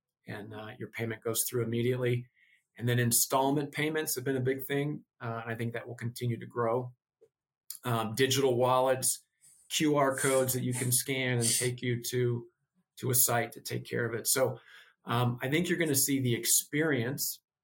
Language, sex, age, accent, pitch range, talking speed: English, male, 40-59, American, 115-135 Hz, 185 wpm